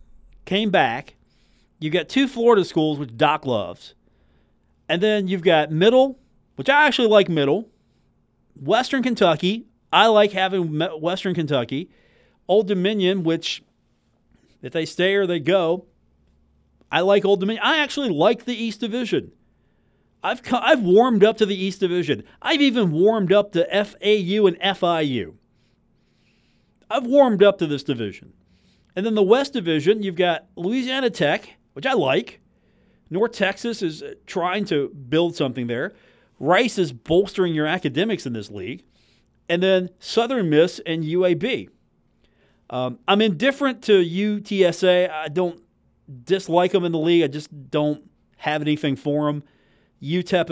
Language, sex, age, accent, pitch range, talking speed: English, male, 40-59, American, 150-205 Hz, 145 wpm